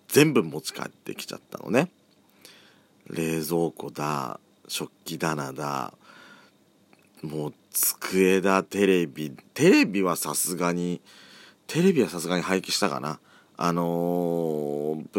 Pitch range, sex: 75-95 Hz, male